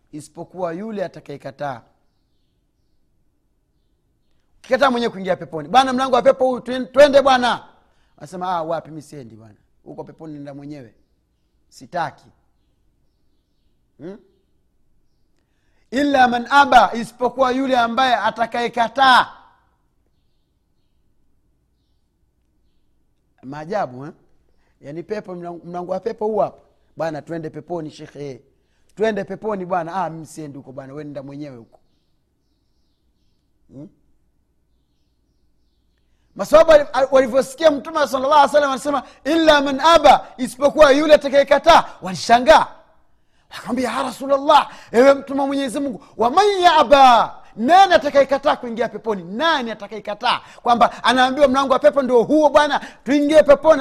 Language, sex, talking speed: Swahili, male, 110 wpm